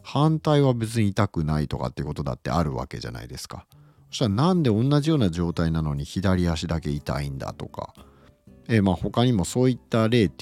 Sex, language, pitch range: male, Japanese, 85-135 Hz